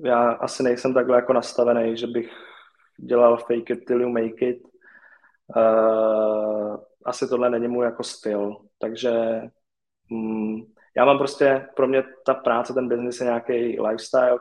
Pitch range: 115-125 Hz